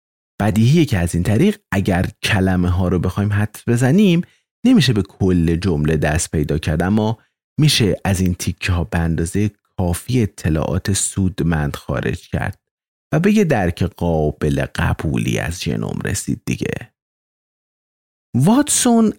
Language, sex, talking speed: Persian, male, 130 wpm